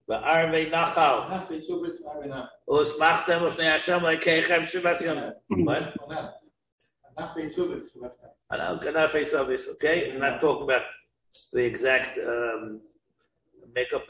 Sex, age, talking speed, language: male, 50-69, 45 wpm, English